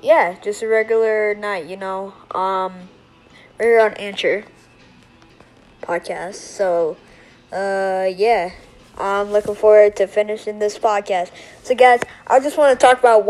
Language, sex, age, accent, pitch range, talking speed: English, female, 20-39, American, 200-235 Hz, 135 wpm